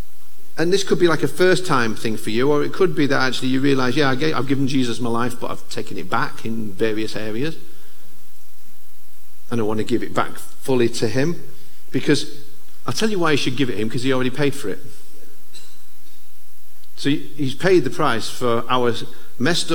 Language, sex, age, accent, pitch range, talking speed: English, male, 50-69, British, 125-155 Hz, 205 wpm